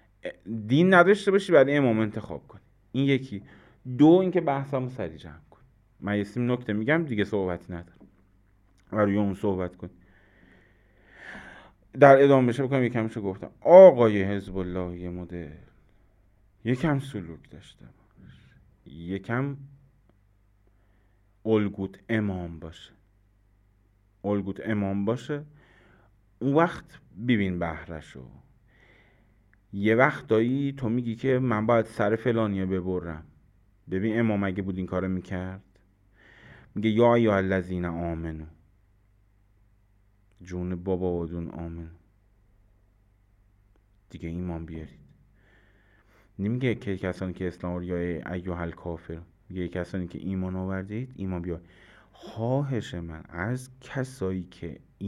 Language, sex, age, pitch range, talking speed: Persian, male, 30-49, 90-115 Hz, 115 wpm